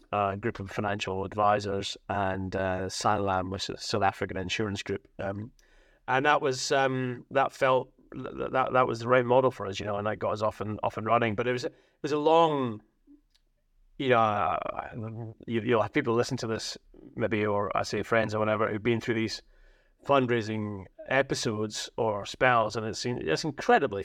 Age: 30-49